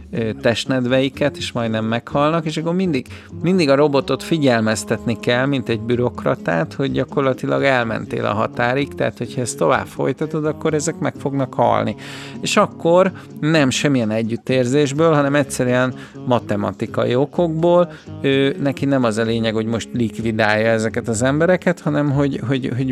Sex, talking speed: male, 145 wpm